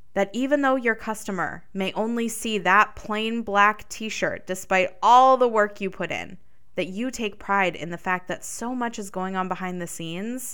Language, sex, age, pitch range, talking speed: English, female, 20-39, 180-230 Hz, 200 wpm